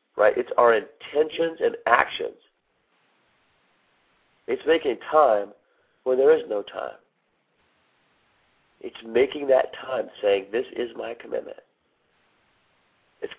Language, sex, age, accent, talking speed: English, male, 50-69, American, 110 wpm